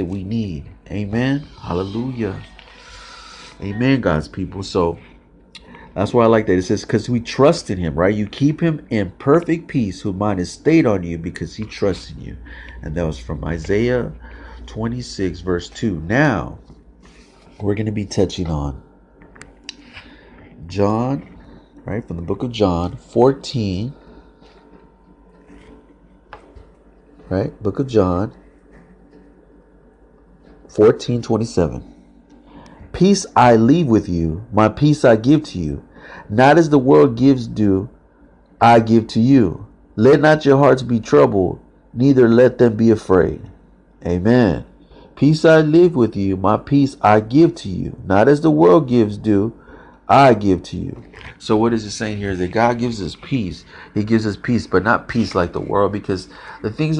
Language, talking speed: English, 155 wpm